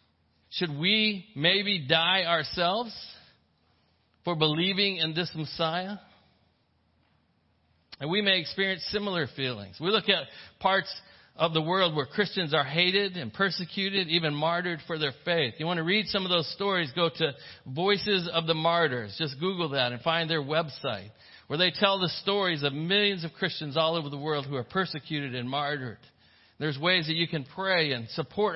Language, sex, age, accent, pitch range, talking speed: English, male, 50-69, American, 145-190 Hz, 170 wpm